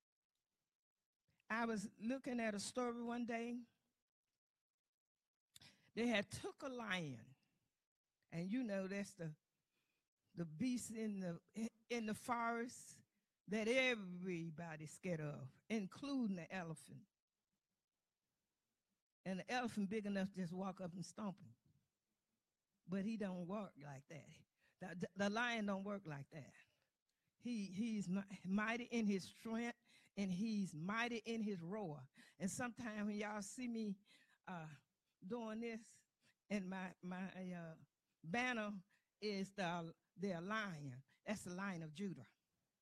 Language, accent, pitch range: English, American, 175-225 Hz